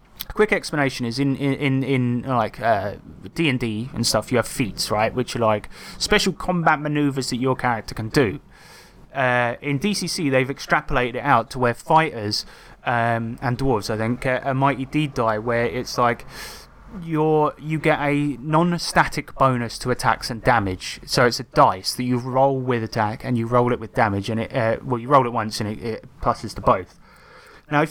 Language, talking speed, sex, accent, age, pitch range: English, 200 wpm, male, British, 20-39, 115-145 Hz